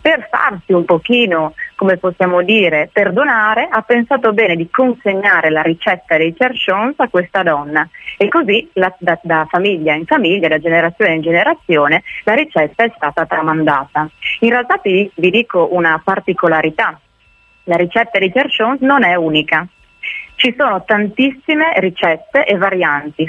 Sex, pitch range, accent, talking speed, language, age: female, 165-240 Hz, native, 145 wpm, Italian, 30-49